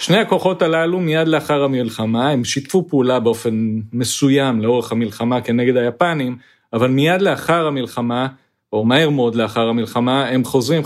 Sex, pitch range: male, 125-160 Hz